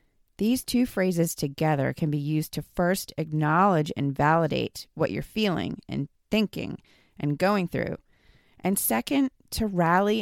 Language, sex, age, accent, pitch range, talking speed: English, female, 30-49, American, 155-195 Hz, 140 wpm